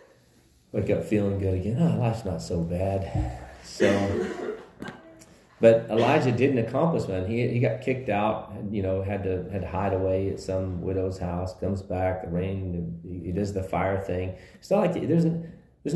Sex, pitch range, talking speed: male, 95-135 Hz, 185 wpm